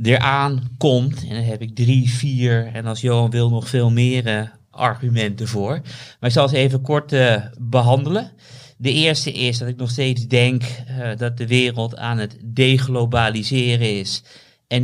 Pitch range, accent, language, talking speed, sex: 115-125 Hz, Dutch, Dutch, 175 wpm, male